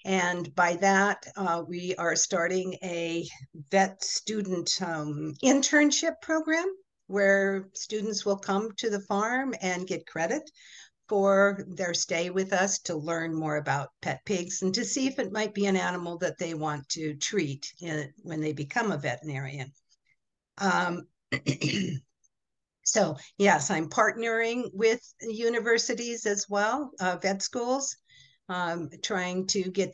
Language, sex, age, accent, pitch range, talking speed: English, female, 50-69, American, 170-220 Hz, 140 wpm